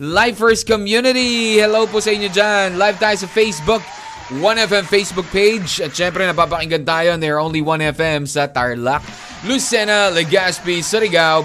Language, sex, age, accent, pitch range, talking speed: Filipino, male, 20-39, native, 130-200 Hz, 140 wpm